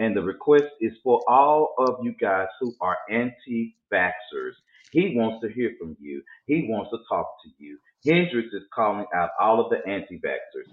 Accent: American